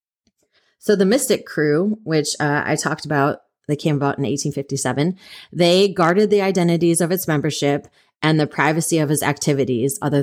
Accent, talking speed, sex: American, 165 wpm, female